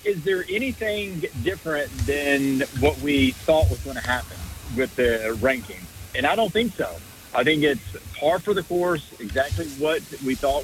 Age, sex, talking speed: 50-69, male, 175 wpm